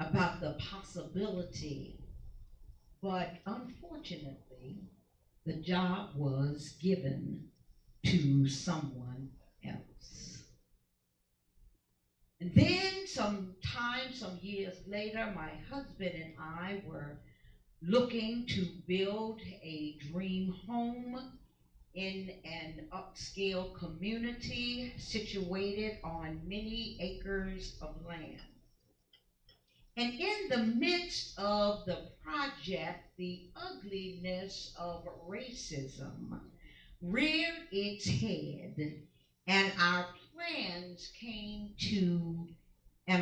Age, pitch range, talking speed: 50-69, 150-205 Hz, 85 wpm